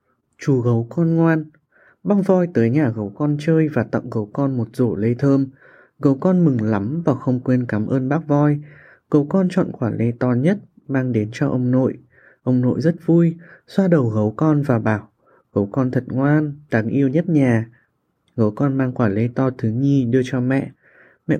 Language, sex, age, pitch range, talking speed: Vietnamese, male, 20-39, 120-155 Hz, 200 wpm